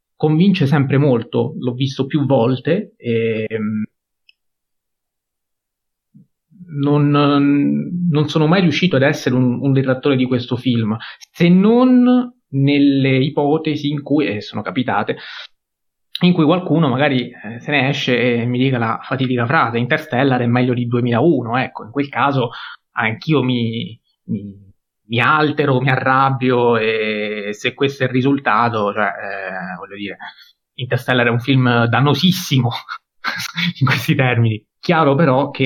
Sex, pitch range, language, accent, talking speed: male, 115-145 Hz, Italian, native, 135 wpm